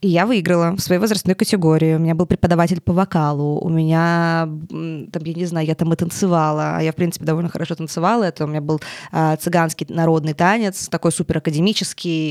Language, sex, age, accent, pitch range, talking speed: Russian, female, 20-39, native, 165-195 Hz, 190 wpm